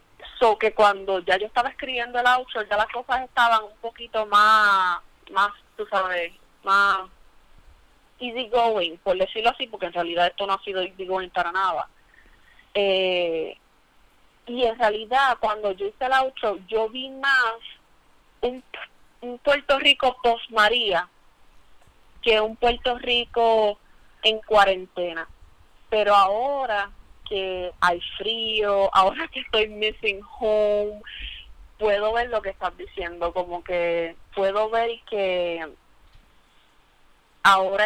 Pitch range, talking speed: 190-230 Hz, 125 wpm